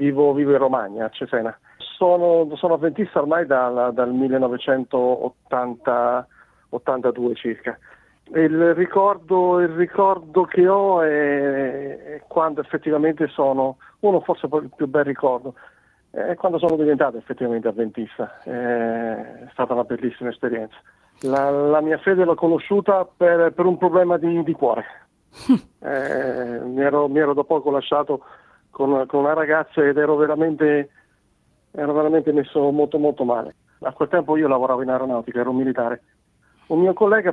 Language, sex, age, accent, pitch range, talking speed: Italian, male, 50-69, native, 125-160 Hz, 135 wpm